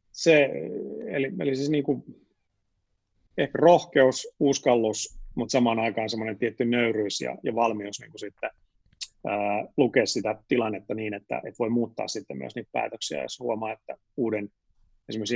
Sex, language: male, Finnish